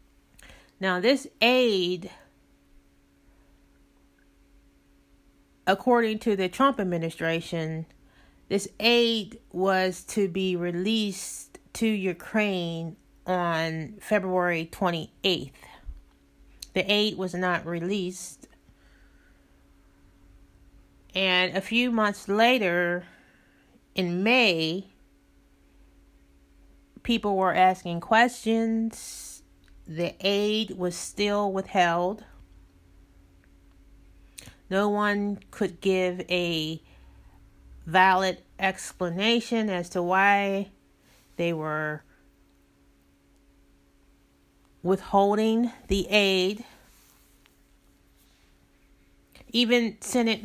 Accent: American